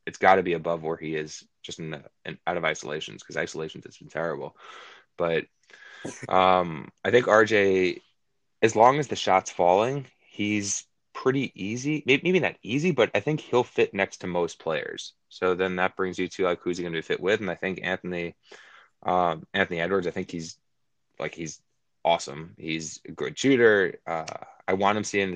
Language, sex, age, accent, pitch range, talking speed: English, male, 20-39, American, 90-105 Hz, 195 wpm